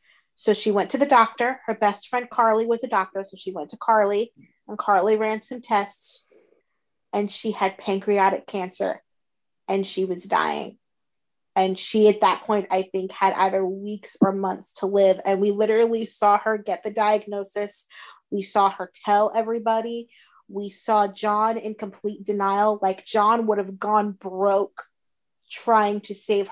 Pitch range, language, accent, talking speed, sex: 195-225 Hz, English, American, 165 wpm, female